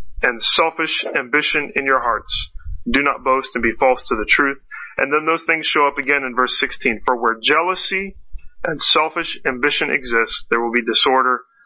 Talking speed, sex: 185 wpm, male